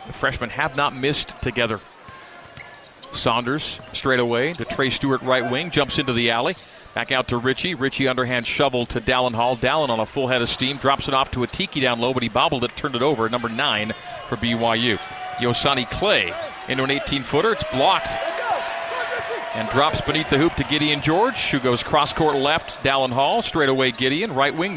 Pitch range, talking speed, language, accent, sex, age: 125-150 Hz, 195 wpm, English, American, male, 40-59